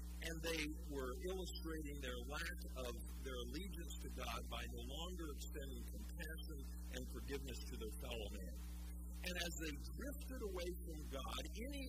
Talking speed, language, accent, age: 150 wpm, English, American, 50-69